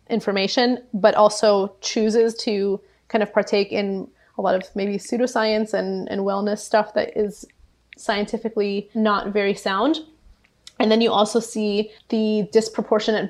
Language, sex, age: English, female, 20-39